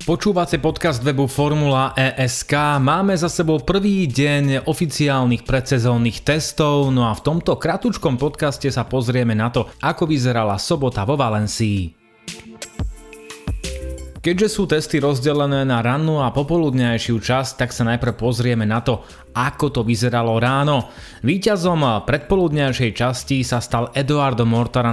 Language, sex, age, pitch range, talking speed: Slovak, male, 30-49, 115-140 Hz, 130 wpm